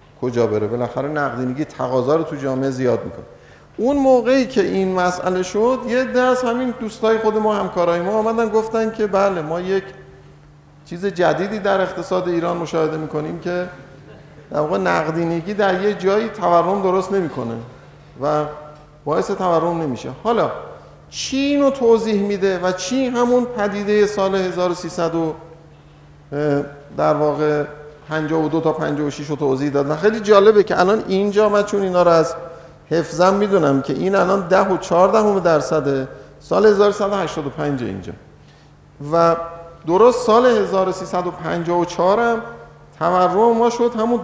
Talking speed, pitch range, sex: 135 wpm, 150-210 Hz, male